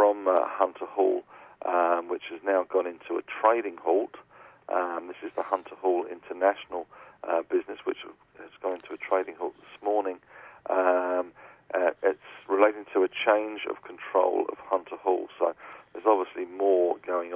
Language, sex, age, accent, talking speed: English, male, 40-59, British, 165 wpm